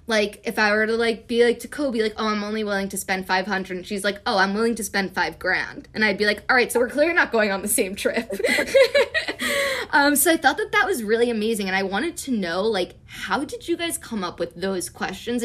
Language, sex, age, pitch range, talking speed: English, female, 20-39, 215-285 Hz, 260 wpm